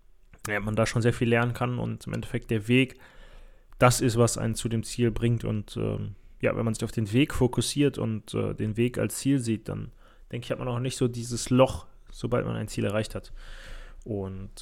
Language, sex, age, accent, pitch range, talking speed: German, male, 20-39, German, 105-120 Hz, 225 wpm